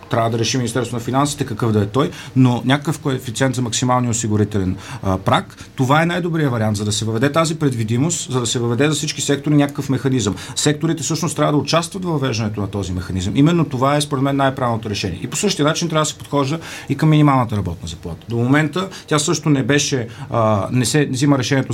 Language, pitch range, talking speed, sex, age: Bulgarian, 105-145 Hz, 220 wpm, male, 40-59